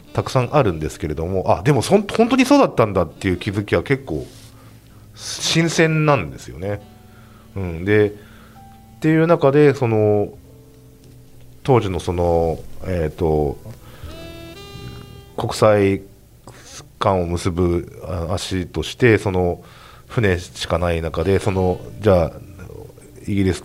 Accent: native